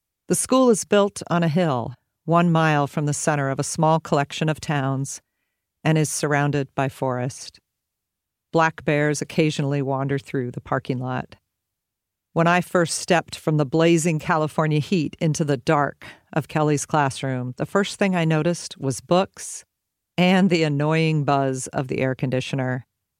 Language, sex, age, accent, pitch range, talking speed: English, female, 50-69, American, 135-170 Hz, 160 wpm